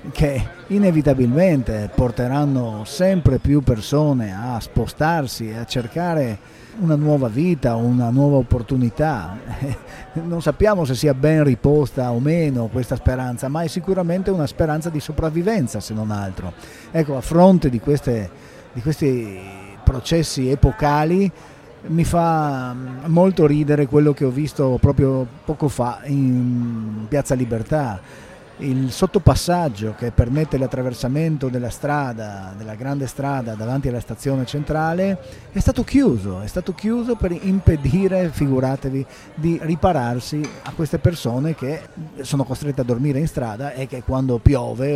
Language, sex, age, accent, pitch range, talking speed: Italian, male, 50-69, native, 120-160 Hz, 130 wpm